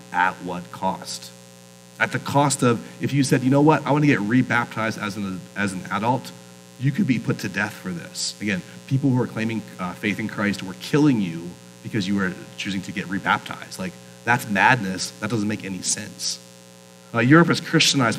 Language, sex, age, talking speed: English, male, 30-49, 205 wpm